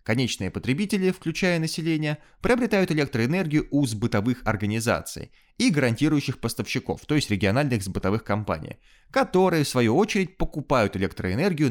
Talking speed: 120 wpm